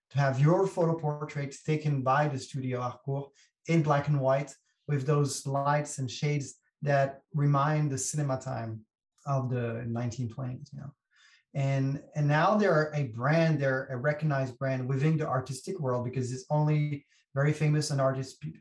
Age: 30-49